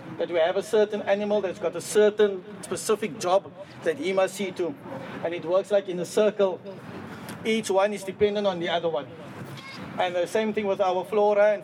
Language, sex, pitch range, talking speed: English, male, 190-225 Hz, 205 wpm